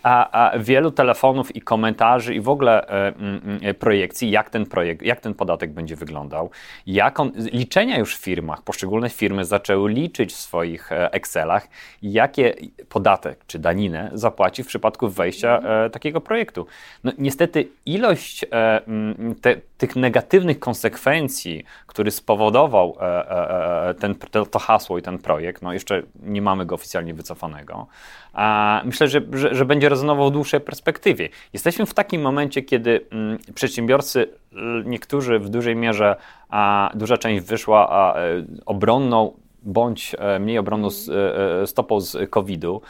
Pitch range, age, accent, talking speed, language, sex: 100-125 Hz, 30-49, native, 140 wpm, Polish, male